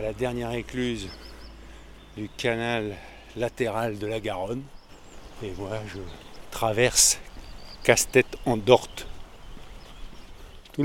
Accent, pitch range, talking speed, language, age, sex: French, 115-150 Hz, 100 wpm, French, 50-69, male